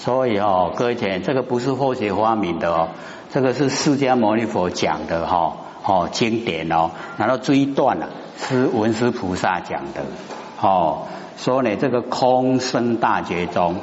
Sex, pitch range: male, 100-140 Hz